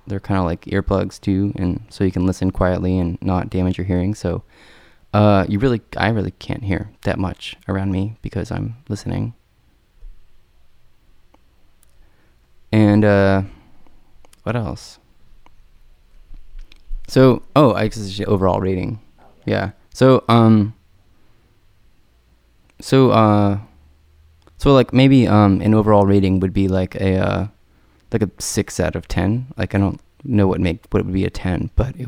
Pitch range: 90-105 Hz